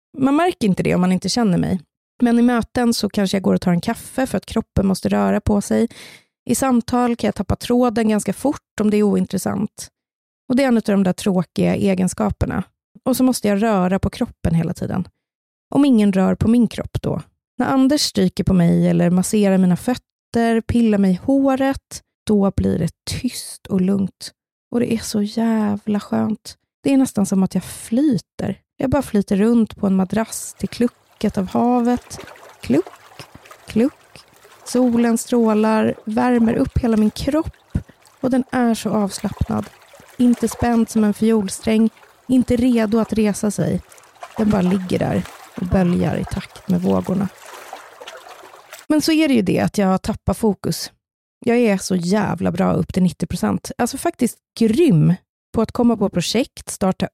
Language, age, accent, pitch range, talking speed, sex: Swedish, 30-49, native, 190-240 Hz, 175 wpm, female